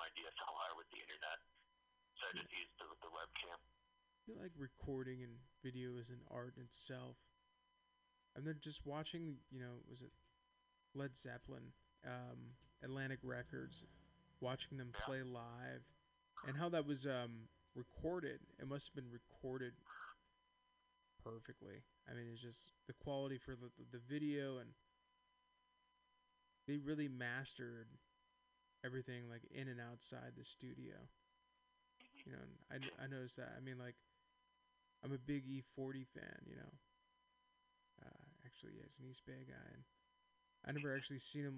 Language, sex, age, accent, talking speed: English, male, 20-39, American, 145 wpm